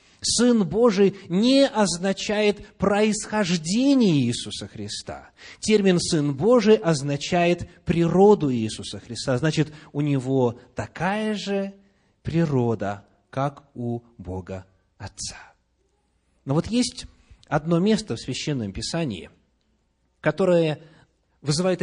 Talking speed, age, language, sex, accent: 95 wpm, 30-49, Russian, male, native